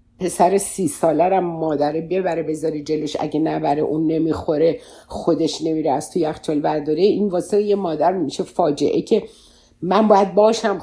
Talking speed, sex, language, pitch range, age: 150 wpm, female, Persian, 155-205 Hz, 50-69